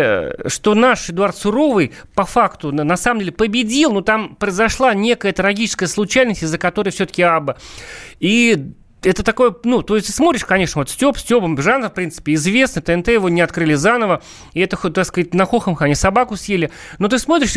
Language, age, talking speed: Russian, 30-49, 175 wpm